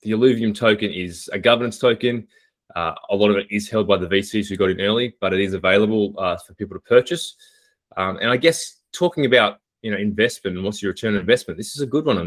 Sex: male